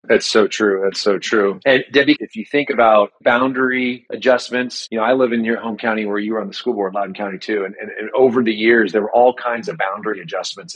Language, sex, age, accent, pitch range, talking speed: English, male, 30-49, American, 105-125 Hz, 250 wpm